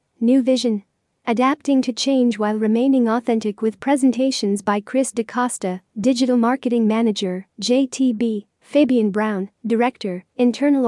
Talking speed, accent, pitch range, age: 115 wpm, American, 215-255 Hz, 40-59